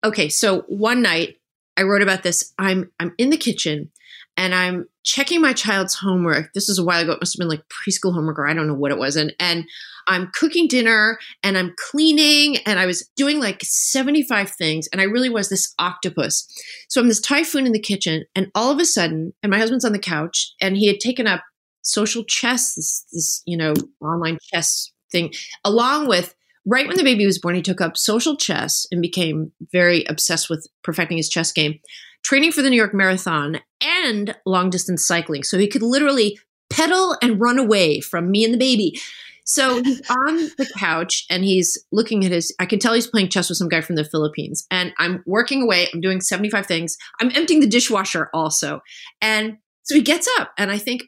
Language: English